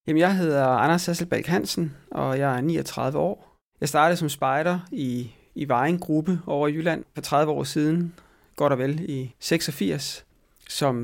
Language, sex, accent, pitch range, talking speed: Danish, male, native, 130-155 Hz, 175 wpm